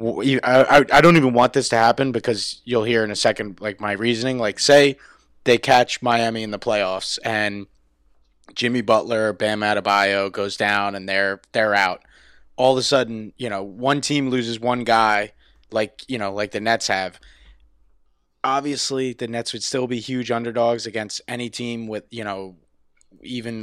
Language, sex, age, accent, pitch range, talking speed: English, male, 20-39, American, 100-120 Hz, 175 wpm